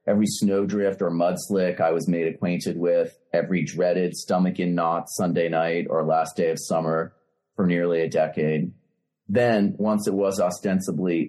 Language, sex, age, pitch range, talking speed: English, male, 30-49, 80-90 Hz, 155 wpm